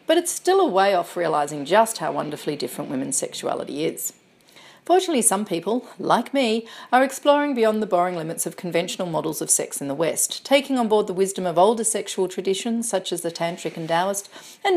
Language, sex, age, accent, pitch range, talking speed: English, female, 40-59, Australian, 175-240 Hz, 200 wpm